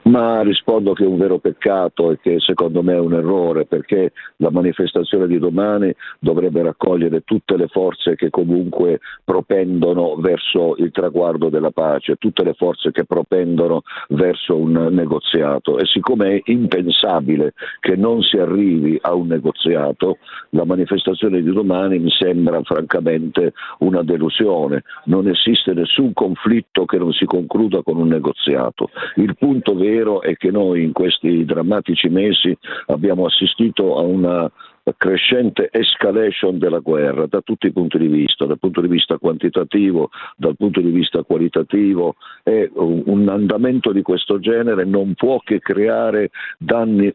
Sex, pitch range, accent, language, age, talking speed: male, 85-100 Hz, native, Italian, 50-69, 145 wpm